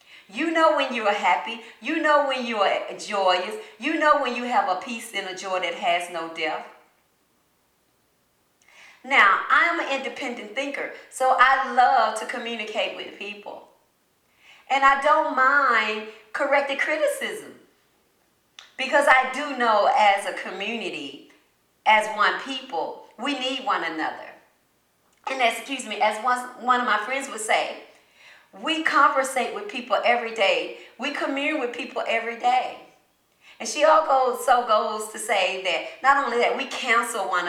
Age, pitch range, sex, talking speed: 40-59, 210-275 Hz, female, 150 wpm